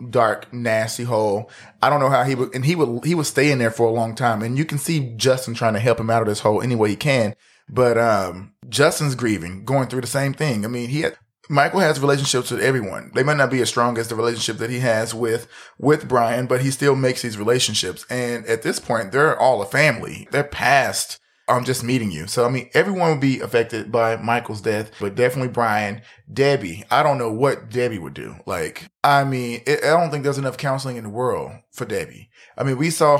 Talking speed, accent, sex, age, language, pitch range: 235 wpm, American, male, 30-49, English, 115-145 Hz